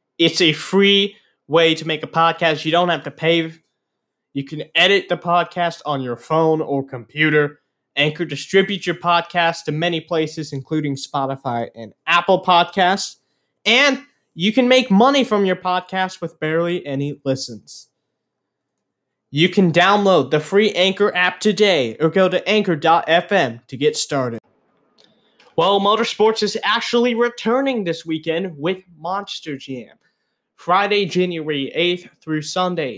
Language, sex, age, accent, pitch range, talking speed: English, male, 20-39, American, 140-185 Hz, 140 wpm